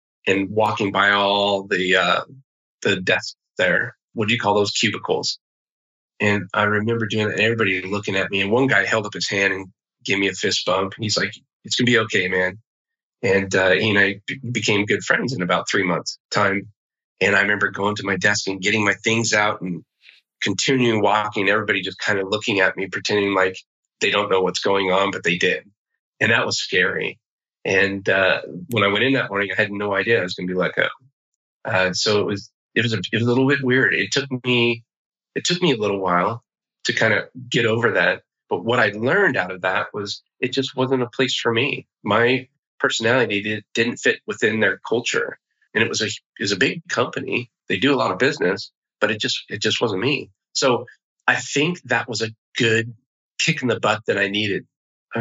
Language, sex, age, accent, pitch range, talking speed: English, male, 20-39, American, 100-120 Hz, 220 wpm